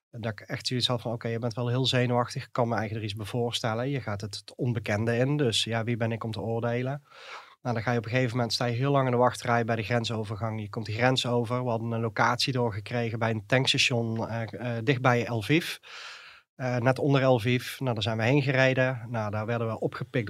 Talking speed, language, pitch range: 240 wpm, Dutch, 115-130 Hz